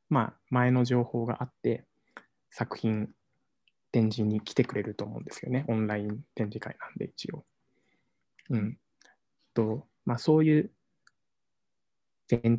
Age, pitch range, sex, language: 20-39, 115-130 Hz, male, Japanese